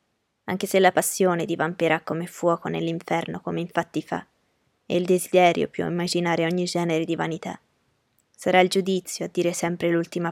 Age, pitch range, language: 20-39, 170-180 Hz, Italian